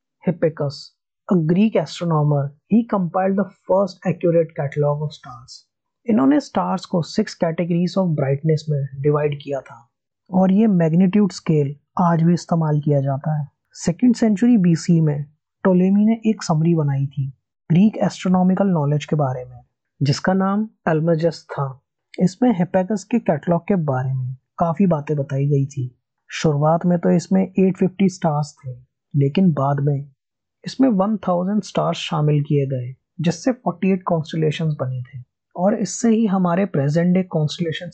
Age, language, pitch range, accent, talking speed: 20-39, Hindi, 145-190 Hz, native, 115 wpm